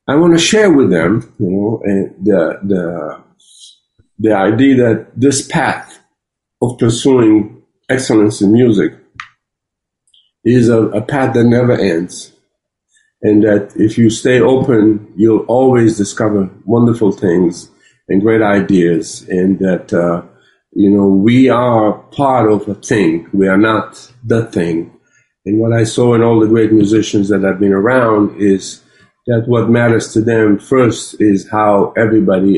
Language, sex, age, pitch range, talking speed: English, male, 50-69, 95-115 Hz, 145 wpm